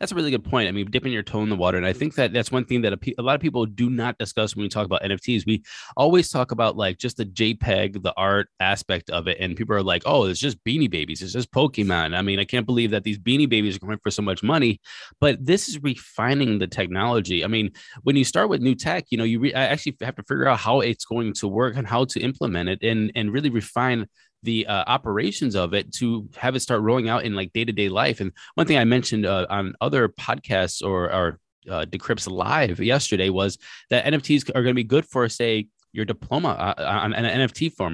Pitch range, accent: 105-130 Hz, American